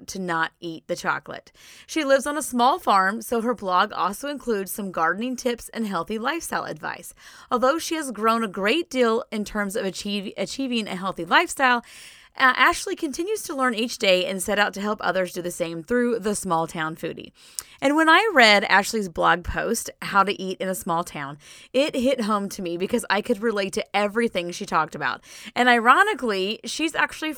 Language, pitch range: English, 185-255 Hz